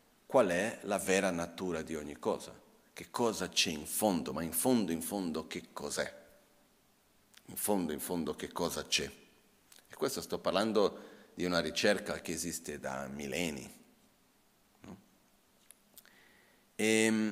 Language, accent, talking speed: Italian, native, 135 wpm